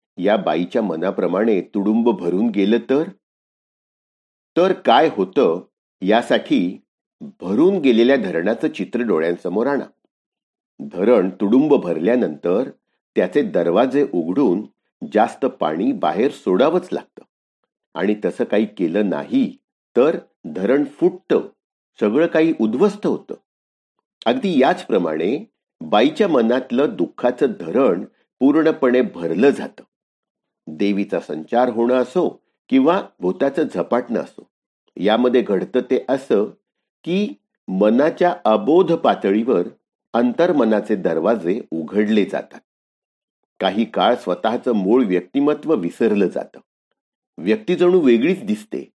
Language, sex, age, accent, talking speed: Marathi, male, 50-69, native, 100 wpm